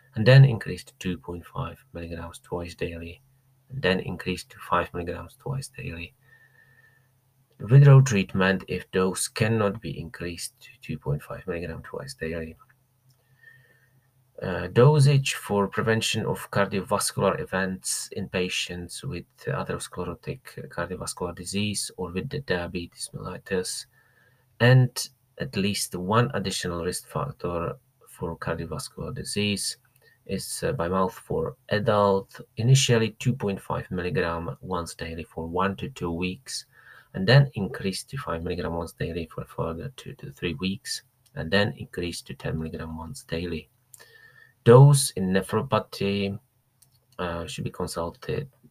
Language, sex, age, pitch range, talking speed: English, male, 30-49, 90-125 Hz, 125 wpm